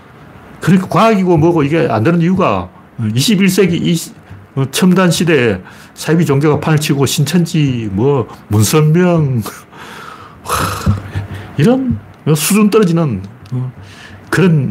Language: Korean